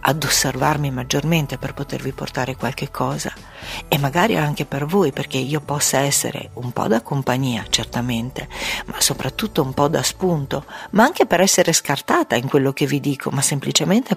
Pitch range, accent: 130-165 Hz, native